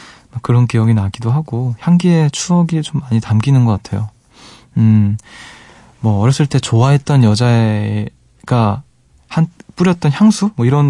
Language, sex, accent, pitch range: Korean, male, native, 110-145 Hz